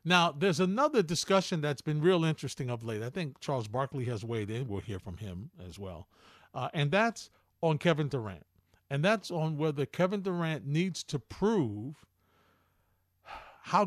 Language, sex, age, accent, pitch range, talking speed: English, male, 50-69, American, 130-200 Hz, 170 wpm